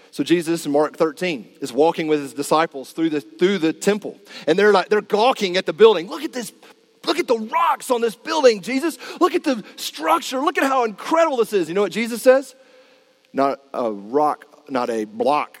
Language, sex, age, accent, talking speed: English, male, 40-59, American, 210 wpm